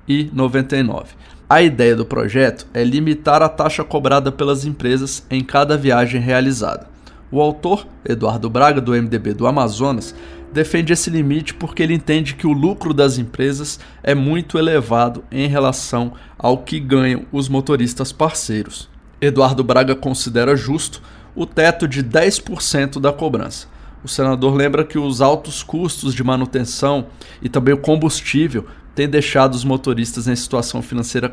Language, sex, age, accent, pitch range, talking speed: Portuguese, male, 20-39, Brazilian, 125-150 Hz, 145 wpm